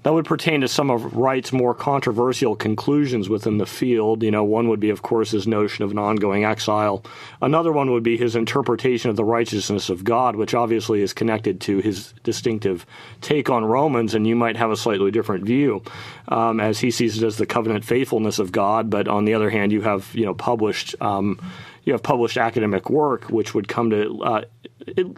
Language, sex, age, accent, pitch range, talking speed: English, male, 30-49, American, 110-130 Hz, 210 wpm